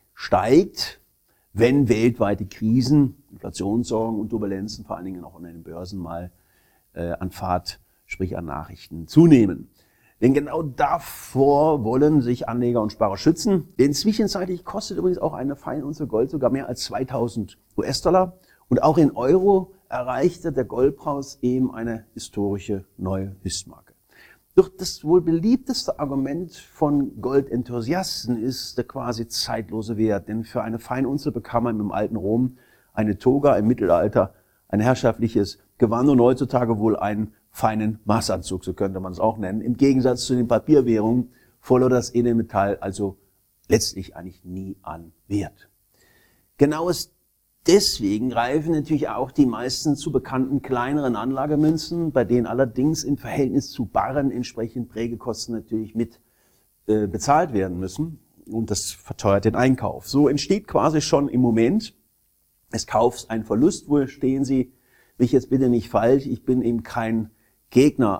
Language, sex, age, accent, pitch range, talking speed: German, male, 50-69, German, 105-140 Hz, 145 wpm